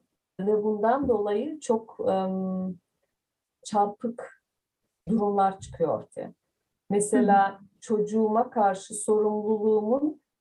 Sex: female